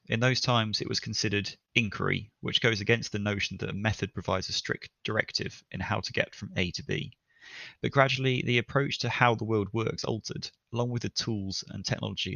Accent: British